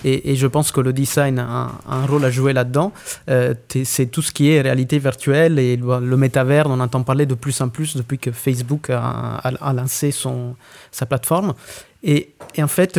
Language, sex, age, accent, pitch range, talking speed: French, male, 30-49, French, 130-155 Hz, 215 wpm